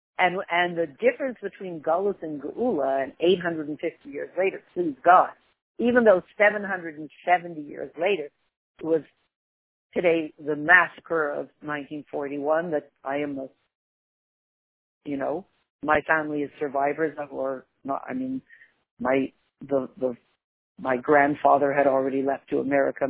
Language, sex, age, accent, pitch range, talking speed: English, female, 50-69, American, 150-230 Hz, 130 wpm